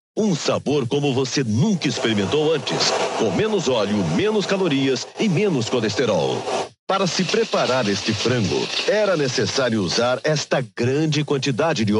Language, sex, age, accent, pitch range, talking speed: Portuguese, male, 60-79, Brazilian, 120-165 Hz, 135 wpm